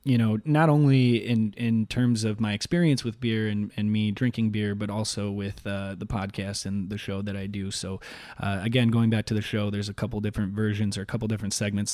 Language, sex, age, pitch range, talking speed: English, male, 20-39, 105-115 Hz, 235 wpm